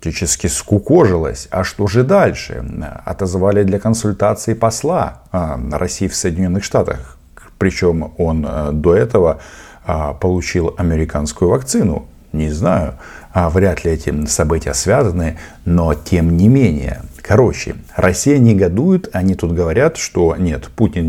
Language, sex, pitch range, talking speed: Russian, male, 80-100 Hz, 115 wpm